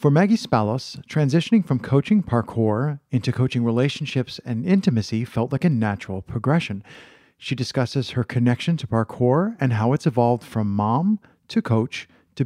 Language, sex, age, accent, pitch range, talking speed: English, male, 50-69, American, 120-160 Hz, 155 wpm